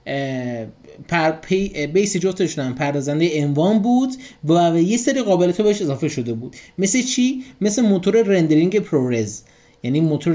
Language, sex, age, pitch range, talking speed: Persian, male, 30-49, 125-175 Hz, 135 wpm